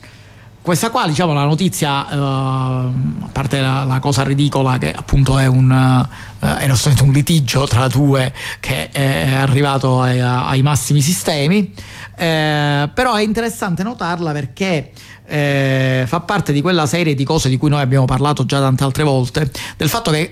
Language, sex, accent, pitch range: Italian, male, native, 135-160 Hz